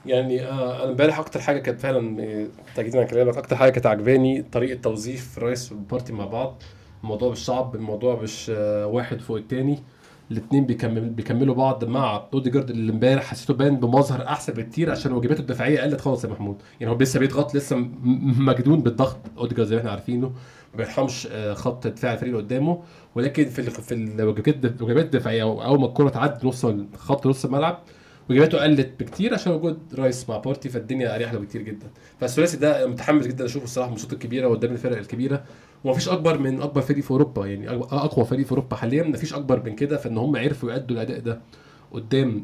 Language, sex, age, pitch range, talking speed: Arabic, male, 20-39, 115-140 Hz, 185 wpm